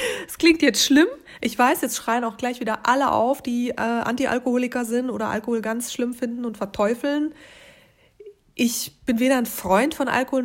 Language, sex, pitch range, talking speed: German, female, 175-240 Hz, 180 wpm